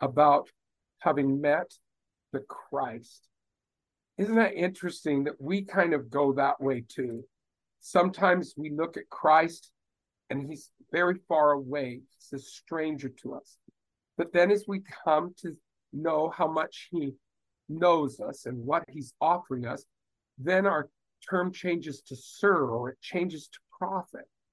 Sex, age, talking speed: male, 50-69, 145 wpm